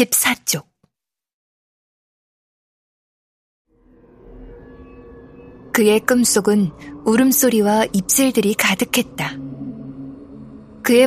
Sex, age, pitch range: female, 20-39, 165-230 Hz